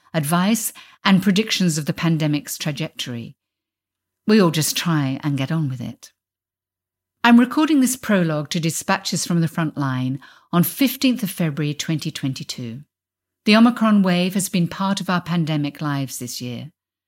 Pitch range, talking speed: 135-180 Hz, 150 wpm